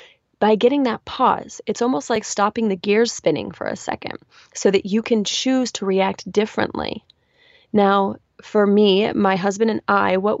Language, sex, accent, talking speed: English, female, American, 175 wpm